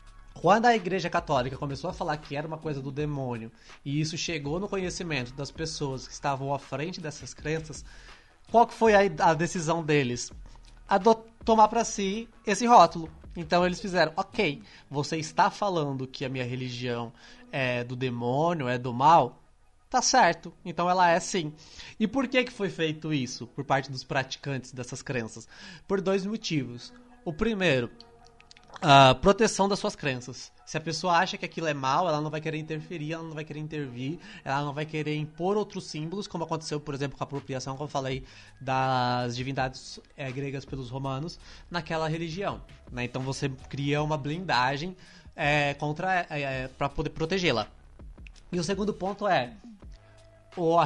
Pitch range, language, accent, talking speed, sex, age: 135-180 Hz, Portuguese, Brazilian, 170 wpm, male, 20-39